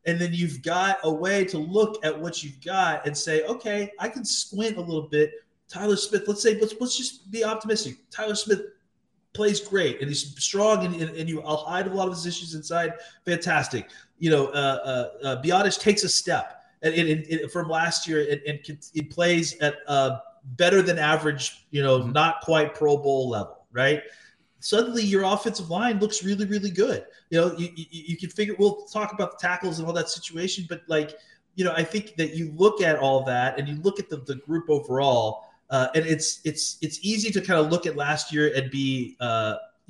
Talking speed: 215 wpm